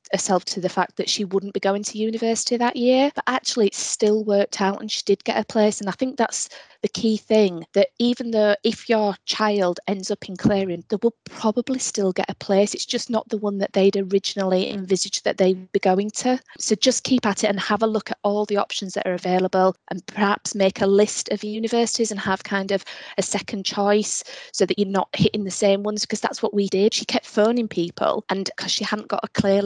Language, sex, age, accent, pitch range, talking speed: English, female, 20-39, British, 185-215 Hz, 235 wpm